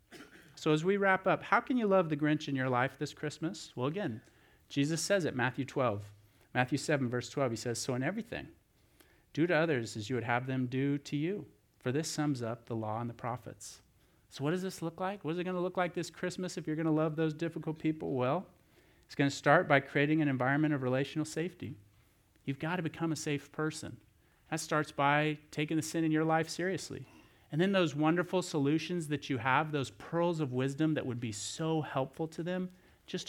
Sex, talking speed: male, 225 wpm